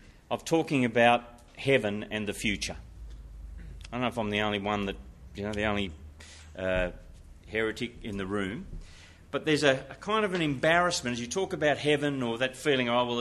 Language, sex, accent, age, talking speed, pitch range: English, male, Australian, 40-59, 195 wpm, 90-130 Hz